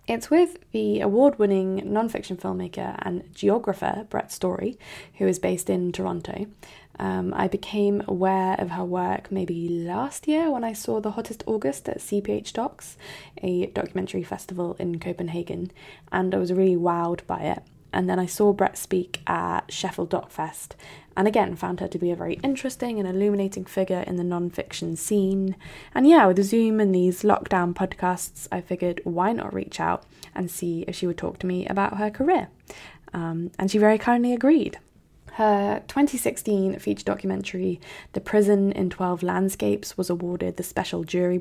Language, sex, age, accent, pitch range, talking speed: English, female, 20-39, British, 175-205 Hz, 170 wpm